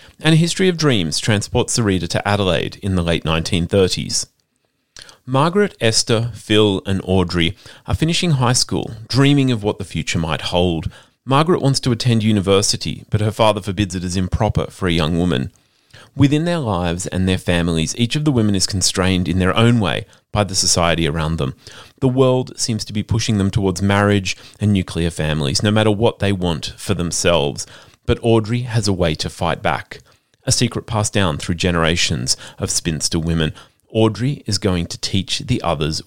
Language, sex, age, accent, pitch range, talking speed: English, male, 30-49, Australian, 90-120 Hz, 185 wpm